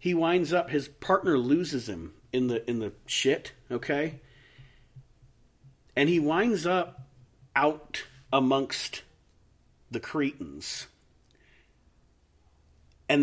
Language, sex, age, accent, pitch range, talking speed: English, male, 40-59, American, 120-145 Hz, 100 wpm